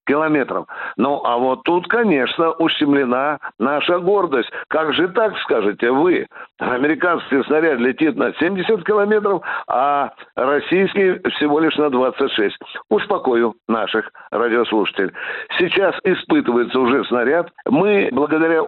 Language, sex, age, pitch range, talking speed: Russian, male, 60-79, 145-190 Hz, 110 wpm